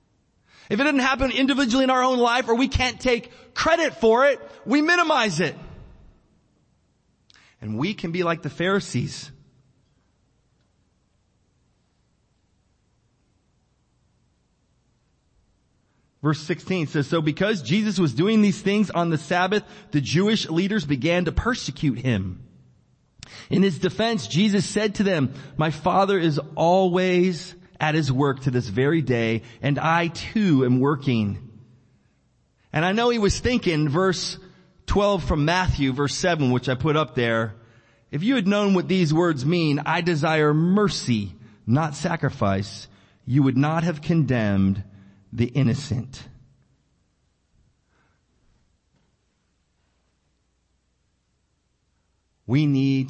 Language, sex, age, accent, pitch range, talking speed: English, male, 30-49, American, 120-185 Hz, 125 wpm